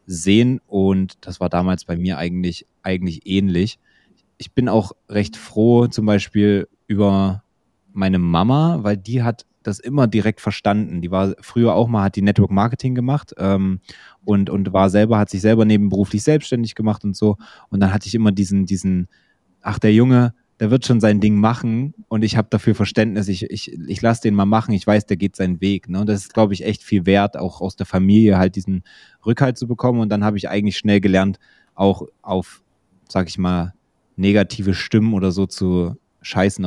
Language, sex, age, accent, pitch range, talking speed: German, male, 20-39, German, 95-110 Hz, 195 wpm